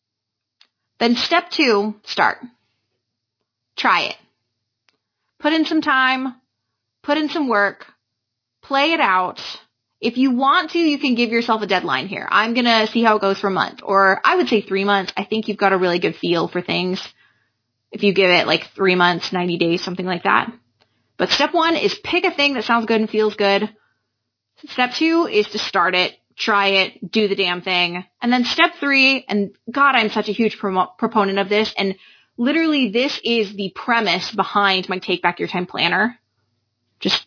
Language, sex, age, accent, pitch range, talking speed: English, female, 20-39, American, 180-255 Hz, 190 wpm